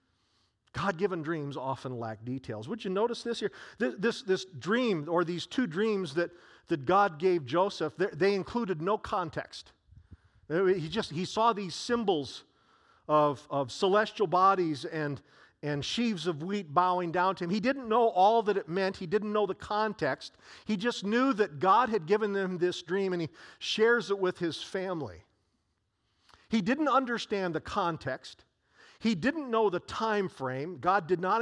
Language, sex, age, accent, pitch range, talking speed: English, male, 50-69, American, 145-210 Hz, 170 wpm